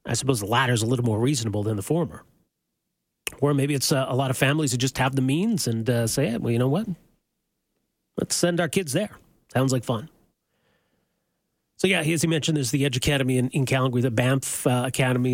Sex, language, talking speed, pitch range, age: male, English, 225 wpm, 120-145 Hz, 40-59